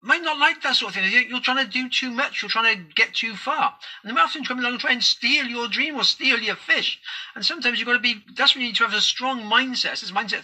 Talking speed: 305 wpm